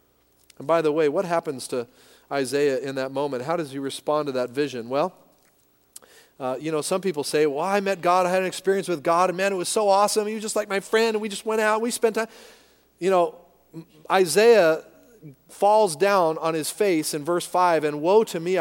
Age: 40-59